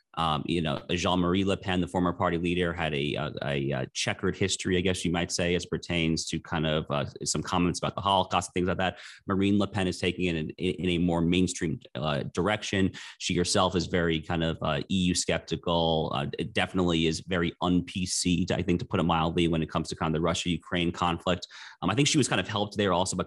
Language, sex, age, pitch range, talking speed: English, male, 30-49, 85-95 Hz, 230 wpm